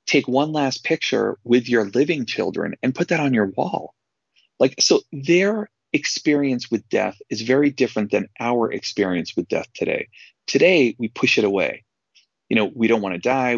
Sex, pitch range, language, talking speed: male, 110-135 Hz, English, 180 wpm